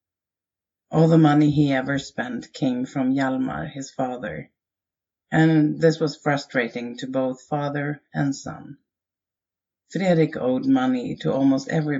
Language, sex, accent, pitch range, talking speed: English, female, Swedish, 125-150 Hz, 130 wpm